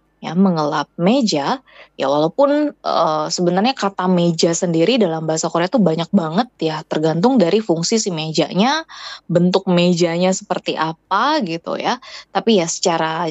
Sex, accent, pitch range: female, native, 160-230 Hz